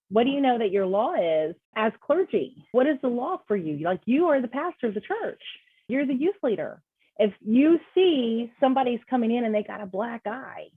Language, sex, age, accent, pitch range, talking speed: English, female, 30-49, American, 200-260 Hz, 225 wpm